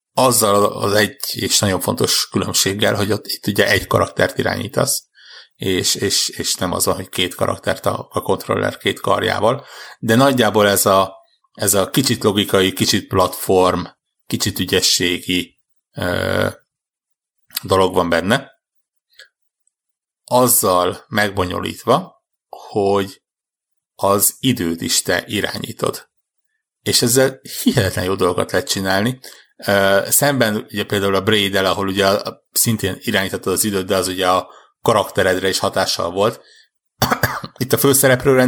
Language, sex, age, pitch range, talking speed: Hungarian, male, 60-79, 95-115 Hz, 125 wpm